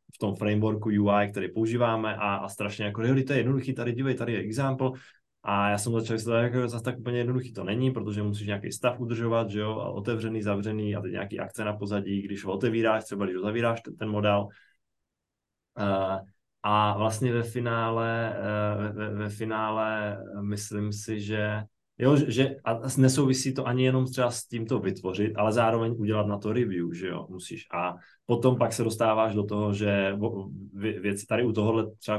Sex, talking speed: male, 190 wpm